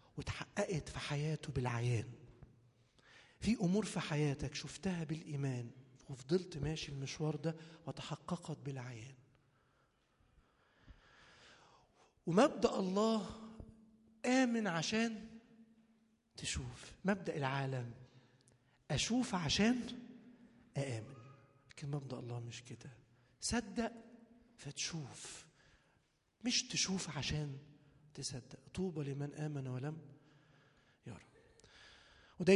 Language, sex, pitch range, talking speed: Arabic, male, 135-195 Hz, 80 wpm